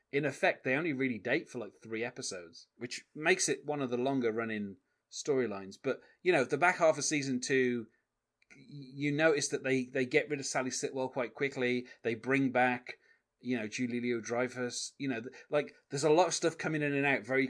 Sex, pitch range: male, 115-145 Hz